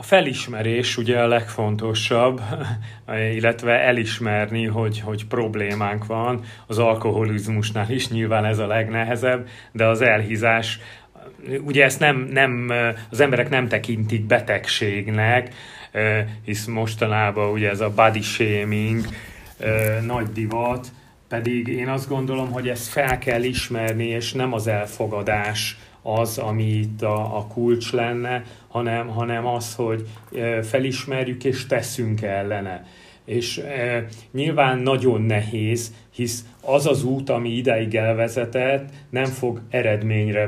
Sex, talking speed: male, 115 wpm